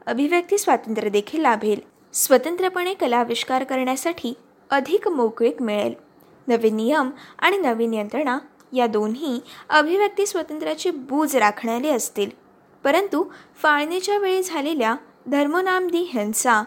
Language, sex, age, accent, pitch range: Marathi, female, 20-39, native, 235-340 Hz